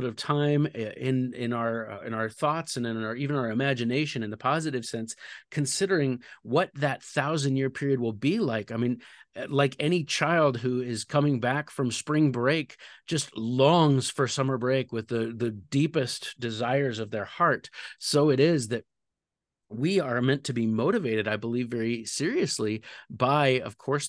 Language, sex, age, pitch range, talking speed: English, male, 30-49, 115-145 Hz, 170 wpm